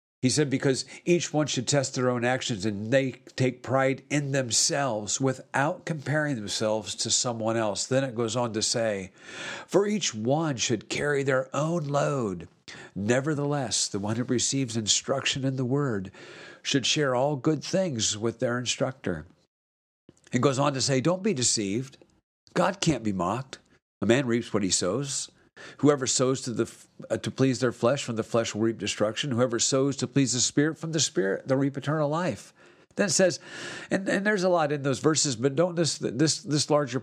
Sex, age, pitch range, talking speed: male, 50-69, 115-145 Hz, 190 wpm